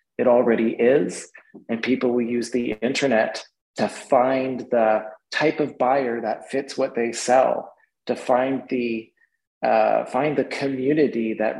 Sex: male